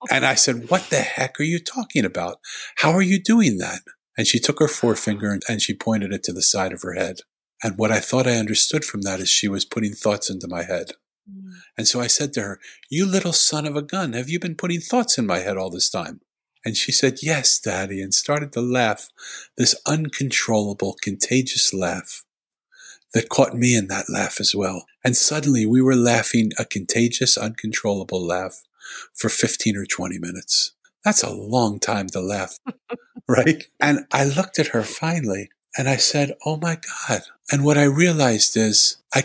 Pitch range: 100-150 Hz